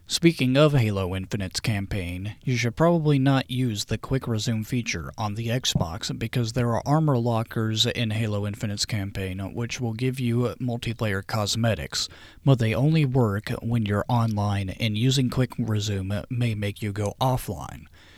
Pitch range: 105-130 Hz